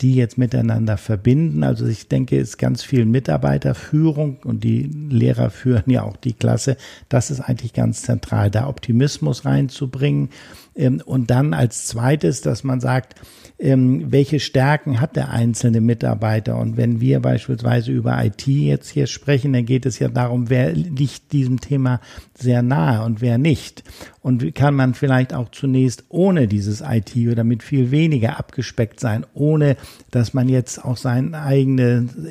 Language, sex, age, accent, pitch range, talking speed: German, male, 60-79, German, 115-140 Hz, 160 wpm